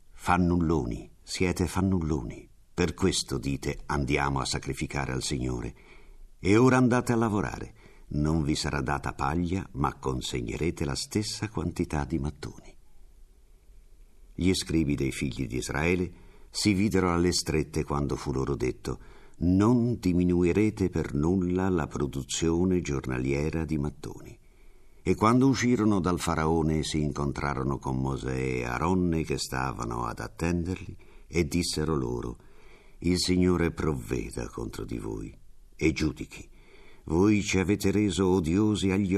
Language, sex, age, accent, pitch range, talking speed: Italian, male, 50-69, native, 70-95 Hz, 125 wpm